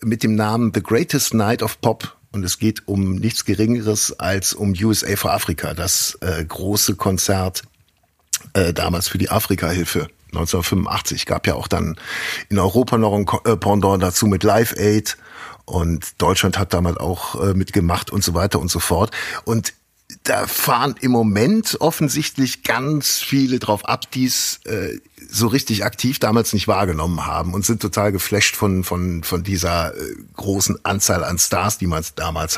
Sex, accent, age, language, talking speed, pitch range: male, German, 50-69, German, 170 wpm, 95-115 Hz